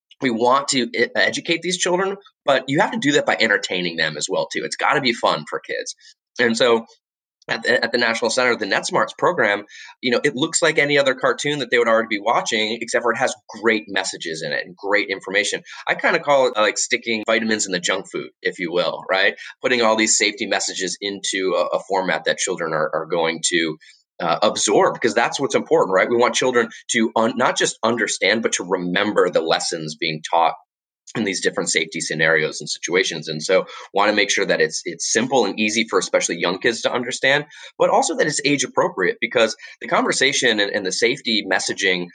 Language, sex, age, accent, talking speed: English, male, 30-49, American, 215 wpm